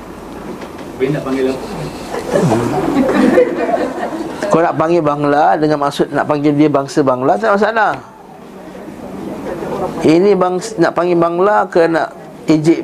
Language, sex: Malay, male